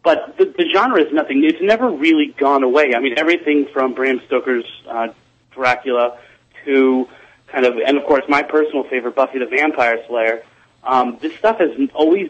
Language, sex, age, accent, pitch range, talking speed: English, male, 30-49, American, 125-155 Hz, 180 wpm